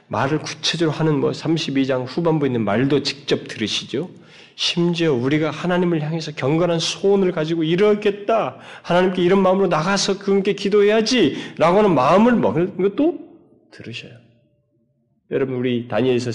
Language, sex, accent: Korean, male, native